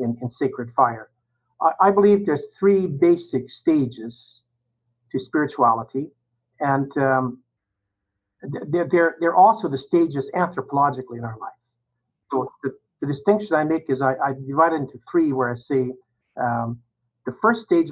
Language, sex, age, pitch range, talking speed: English, male, 50-69, 120-155 Hz, 150 wpm